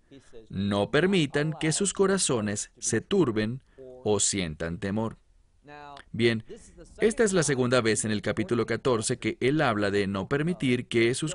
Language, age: English, 40-59